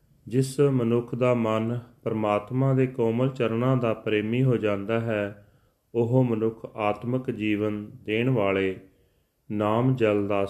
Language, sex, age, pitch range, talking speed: Punjabi, male, 40-59, 105-120 Hz, 125 wpm